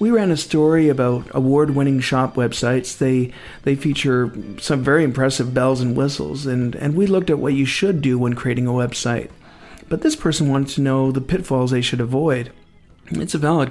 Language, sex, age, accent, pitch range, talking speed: English, male, 50-69, American, 130-155 Hz, 195 wpm